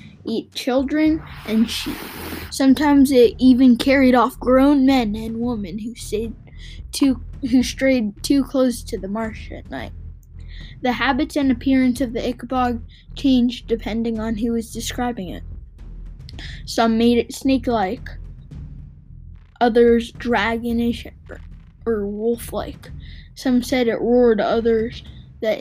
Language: English